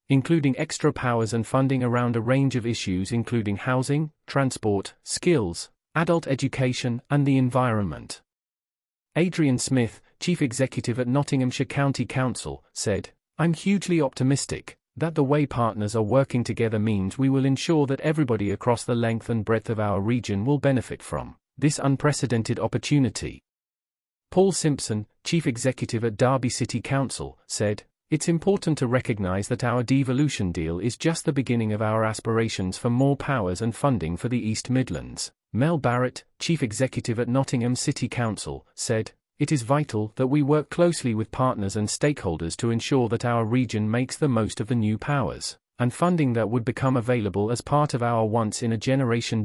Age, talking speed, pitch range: 40-59, 165 wpm, 110-140 Hz